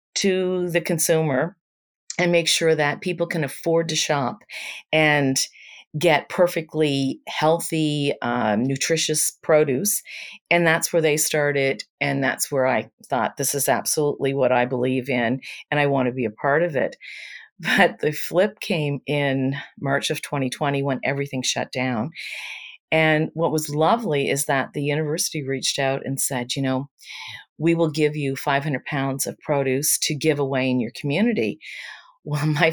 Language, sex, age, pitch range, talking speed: English, female, 40-59, 135-160 Hz, 160 wpm